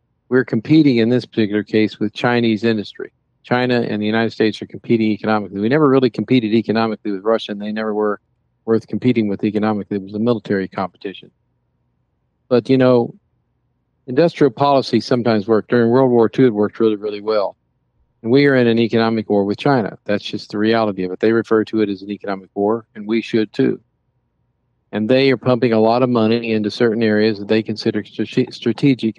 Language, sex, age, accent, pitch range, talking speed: English, male, 50-69, American, 105-120 Hz, 195 wpm